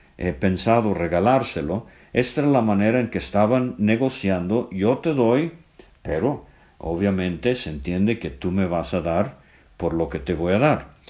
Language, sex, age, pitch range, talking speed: English, male, 50-69, 95-130 Hz, 170 wpm